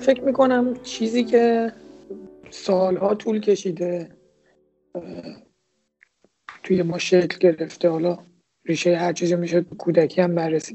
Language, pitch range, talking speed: Persian, 185-215 Hz, 105 wpm